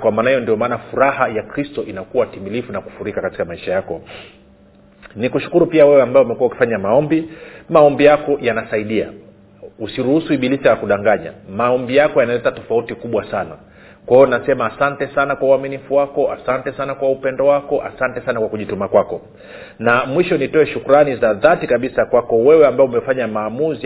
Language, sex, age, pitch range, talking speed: Swahili, male, 40-59, 130-175 Hz, 160 wpm